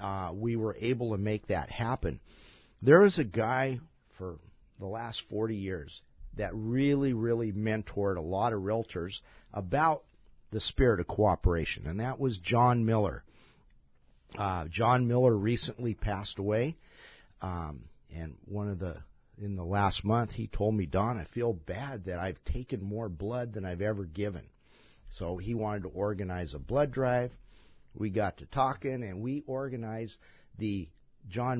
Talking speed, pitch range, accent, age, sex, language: 160 wpm, 100-125 Hz, American, 50-69, male, English